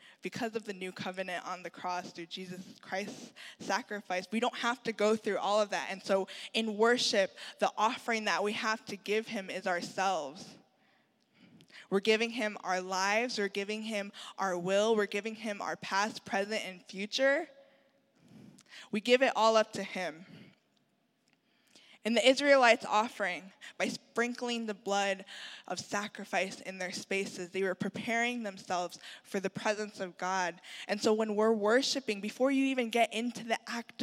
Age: 20-39